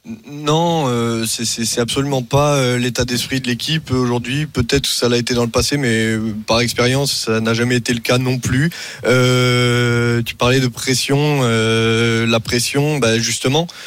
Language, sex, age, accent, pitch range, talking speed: French, male, 20-39, French, 115-130 Hz, 175 wpm